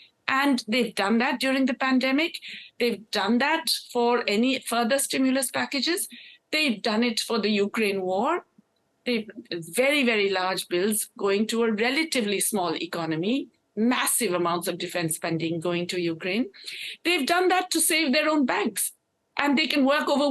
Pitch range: 220-280 Hz